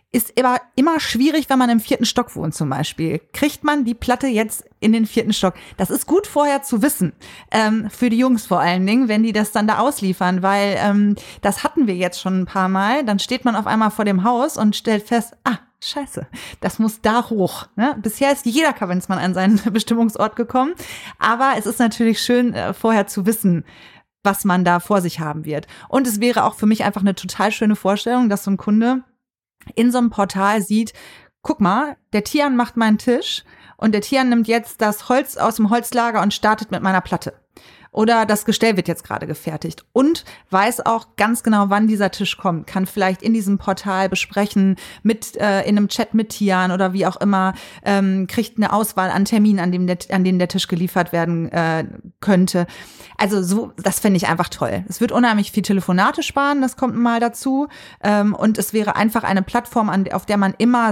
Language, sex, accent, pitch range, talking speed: German, female, German, 190-235 Hz, 210 wpm